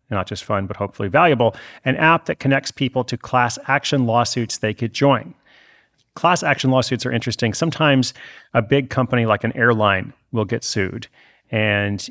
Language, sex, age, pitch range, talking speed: English, male, 30-49, 105-125 Hz, 170 wpm